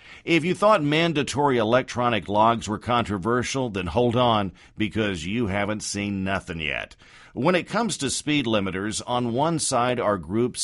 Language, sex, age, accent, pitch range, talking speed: English, male, 50-69, American, 95-120 Hz, 160 wpm